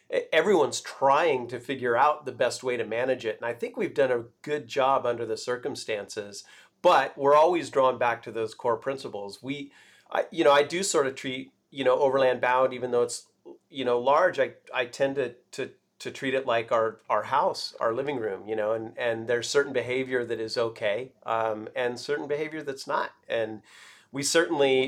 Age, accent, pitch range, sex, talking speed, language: 40-59, American, 115-140 Hz, male, 205 wpm, English